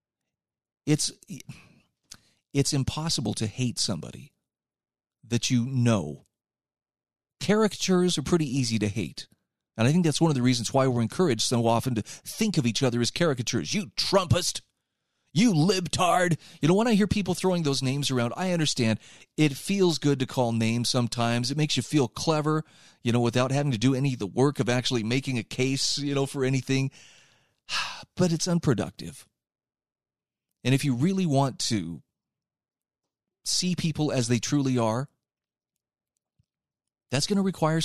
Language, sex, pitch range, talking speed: English, male, 120-155 Hz, 160 wpm